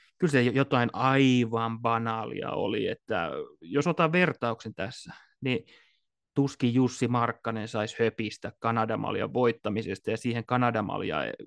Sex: male